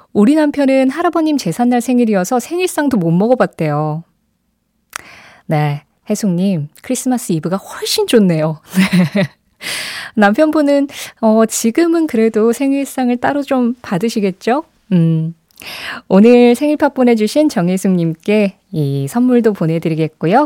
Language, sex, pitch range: Korean, female, 180-260 Hz